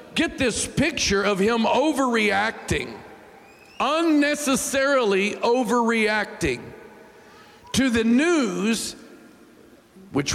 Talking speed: 70 wpm